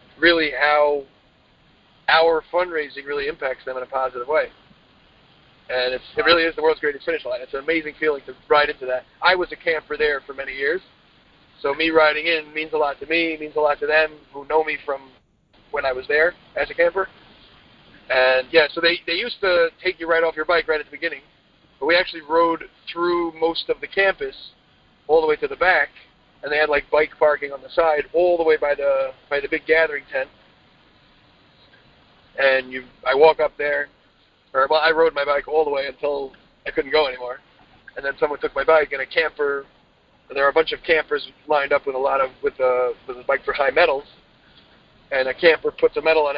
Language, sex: English, male